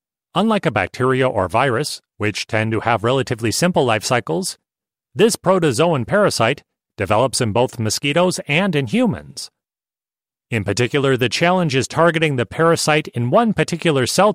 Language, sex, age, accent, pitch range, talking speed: English, male, 40-59, American, 115-160 Hz, 145 wpm